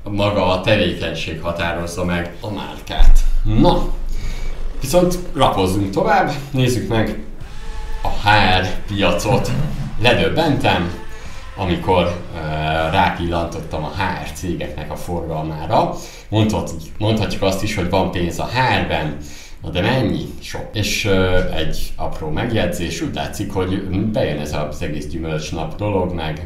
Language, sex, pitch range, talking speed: Hungarian, male, 85-100 Hz, 120 wpm